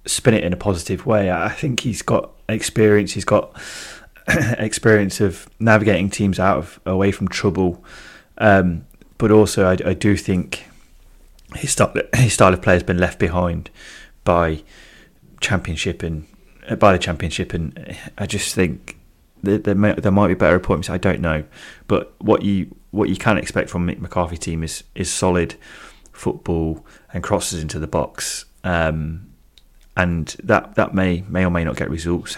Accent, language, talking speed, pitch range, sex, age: British, English, 170 wpm, 80-100 Hz, male, 30-49